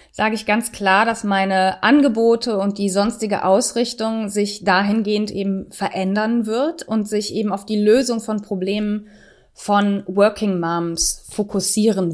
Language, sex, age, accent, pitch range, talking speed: German, female, 20-39, German, 195-225 Hz, 140 wpm